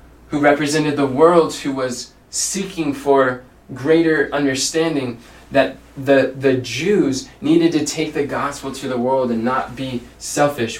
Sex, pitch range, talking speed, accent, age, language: male, 115-150 Hz, 145 wpm, American, 20-39, English